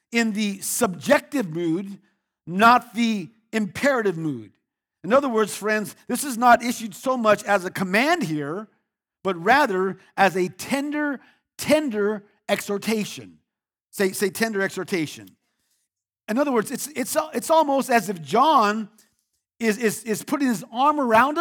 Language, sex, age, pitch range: English, male, 50-69, 190-255 Hz